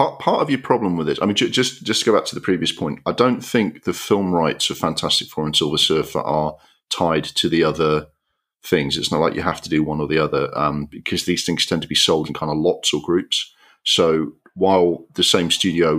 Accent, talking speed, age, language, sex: British, 245 wpm, 40-59, English, male